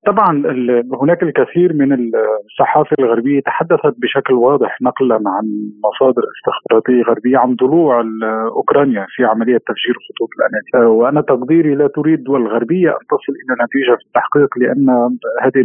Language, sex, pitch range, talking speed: Arabic, male, 115-145 Hz, 140 wpm